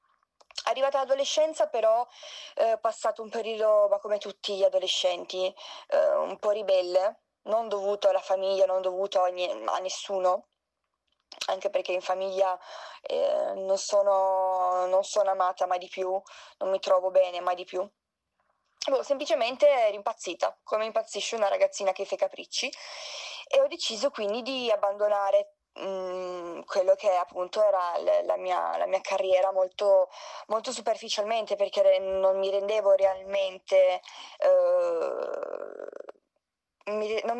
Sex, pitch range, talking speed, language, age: female, 195-280 Hz, 135 wpm, Italian, 20-39